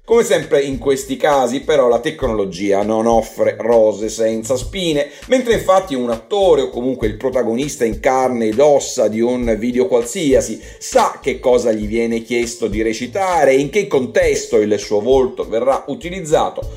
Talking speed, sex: 165 wpm, male